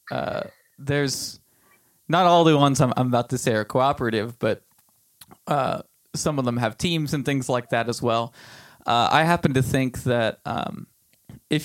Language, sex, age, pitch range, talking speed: English, male, 20-39, 120-145 Hz, 170 wpm